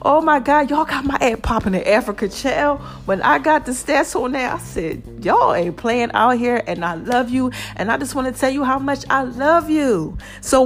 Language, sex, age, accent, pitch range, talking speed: English, female, 40-59, American, 240-310 Hz, 235 wpm